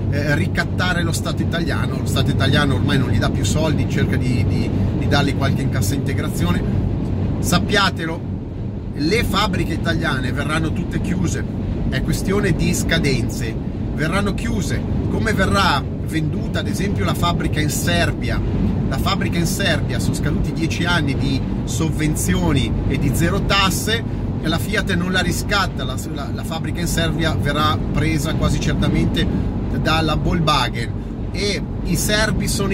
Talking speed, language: 145 wpm, Italian